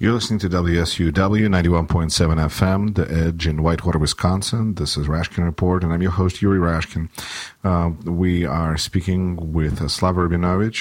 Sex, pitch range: male, 90-110 Hz